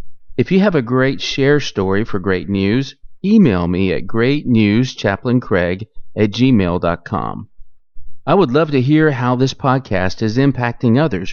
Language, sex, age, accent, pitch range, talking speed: English, male, 40-59, American, 100-130 Hz, 145 wpm